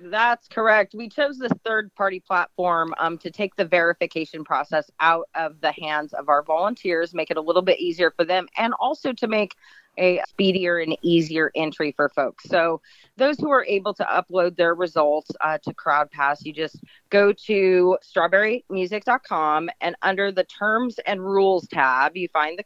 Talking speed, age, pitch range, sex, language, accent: 175 wpm, 30-49, 160-195 Hz, female, English, American